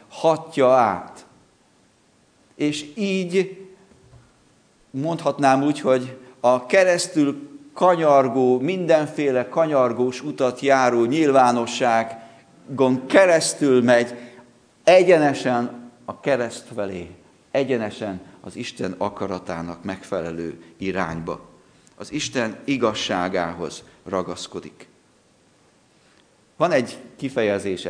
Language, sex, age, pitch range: Hungarian, male, 50-69, 105-150 Hz